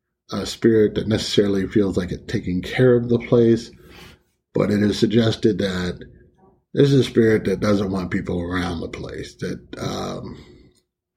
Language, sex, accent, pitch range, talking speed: English, male, American, 95-125 Hz, 160 wpm